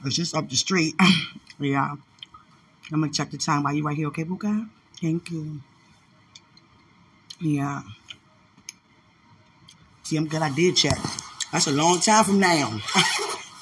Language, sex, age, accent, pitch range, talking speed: English, female, 20-39, American, 150-225 Hz, 155 wpm